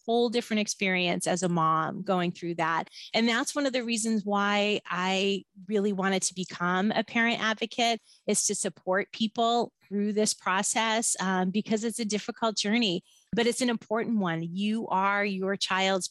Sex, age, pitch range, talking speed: female, 30-49, 175-210 Hz, 170 wpm